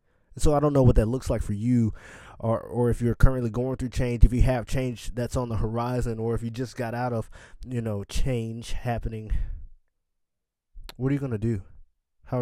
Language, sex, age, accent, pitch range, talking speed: English, male, 20-39, American, 95-115 Hz, 215 wpm